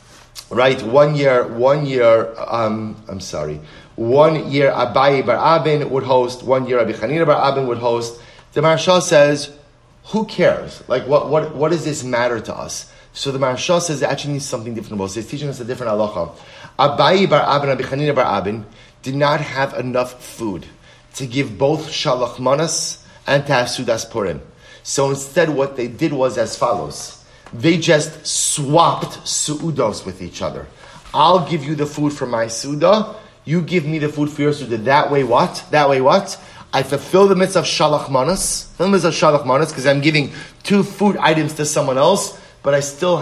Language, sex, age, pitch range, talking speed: English, male, 30-49, 125-155 Hz, 180 wpm